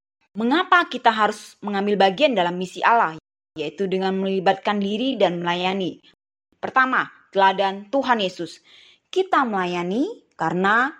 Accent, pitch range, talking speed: native, 185-245 Hz, 115 wpm